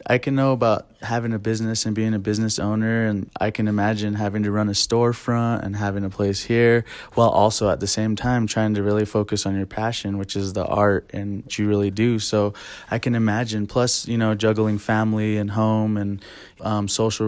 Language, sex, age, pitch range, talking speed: English, male, 20-39, 105-110 Hz, 210 wpm